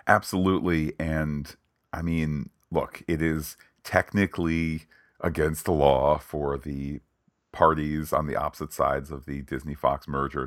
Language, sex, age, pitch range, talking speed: English, male, 40-59, 75-95 Hz, 130 wpm